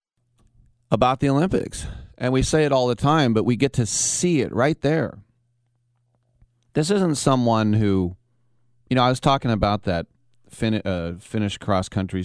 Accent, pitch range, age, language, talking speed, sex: American, 90-120 Hz, 30-49, English, 155 wpm, male